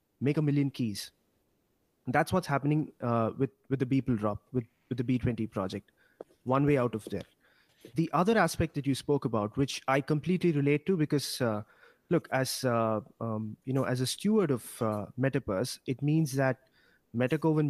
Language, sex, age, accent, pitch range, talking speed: English, male, 30-49, Indian, 125-155 Hz, 185 wpm